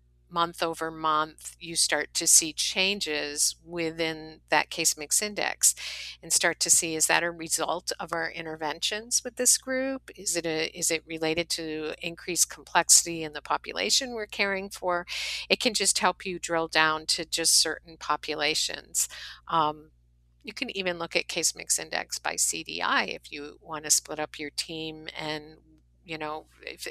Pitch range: 155-175 Hz